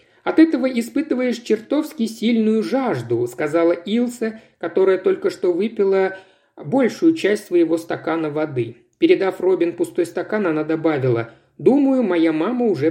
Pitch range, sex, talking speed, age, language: 150-245 Hz, male, 125 wpm, 50-69, Russian